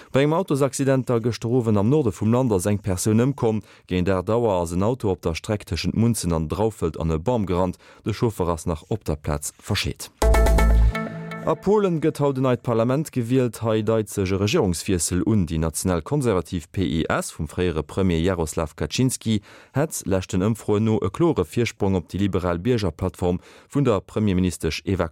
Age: 30-49